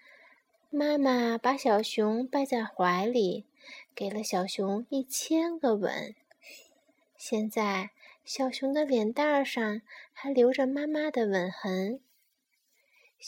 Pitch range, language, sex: 225-300 Hz, Chinese, female